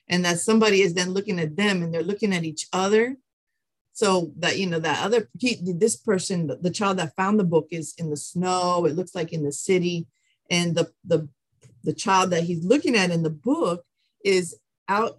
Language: English